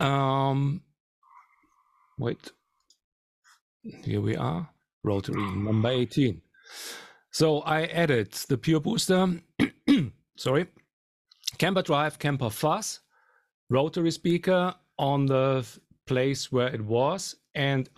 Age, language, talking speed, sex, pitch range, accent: 40-59, English, 95 wpm, male, 120-155 Hz, German